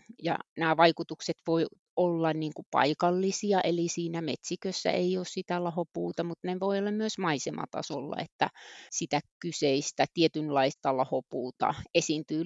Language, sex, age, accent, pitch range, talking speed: Finnish, female, 30-49, native, 150-180 Hz, 115 wpm